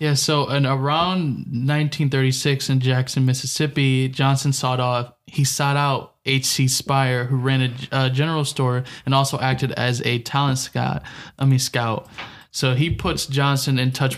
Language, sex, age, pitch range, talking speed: English, male, 20-39, 125-140 Hz, 160 wpm